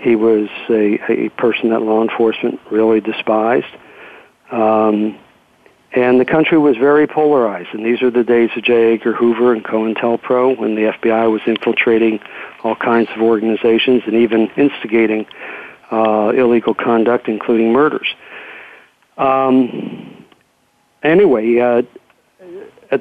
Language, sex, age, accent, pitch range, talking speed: English, male, 50-69, American, 115-125 Hz, 130 wpm